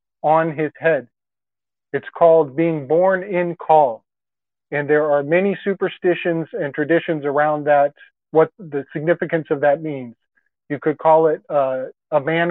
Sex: male